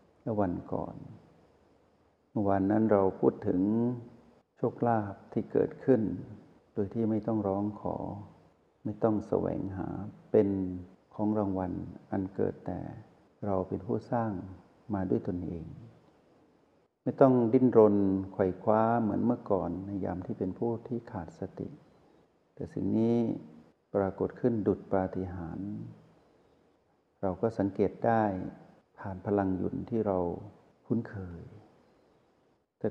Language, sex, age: Thai, male, 60-79